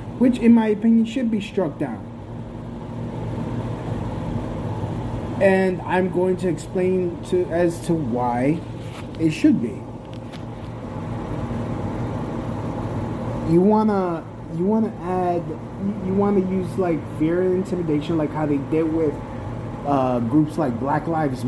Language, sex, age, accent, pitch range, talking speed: English, male, 30-49, American, 125-170 Hz, 125 wpm